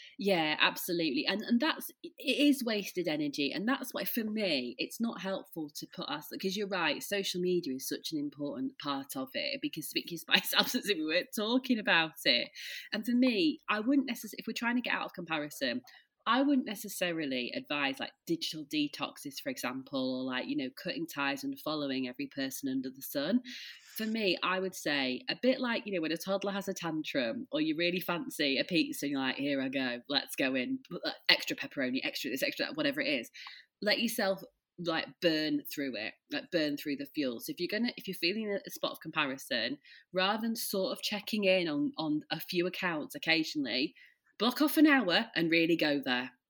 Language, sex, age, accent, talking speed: English, female, 20-39, British, 205 wpm